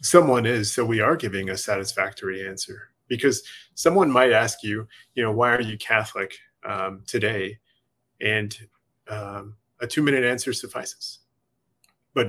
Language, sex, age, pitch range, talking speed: English, male, 20-39, 105-120 Hz, 145 wpm